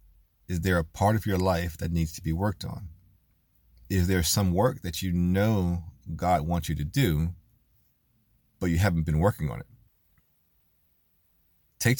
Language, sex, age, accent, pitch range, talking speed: English, male, 40-59, American, 80-95 Hz, 165 wpm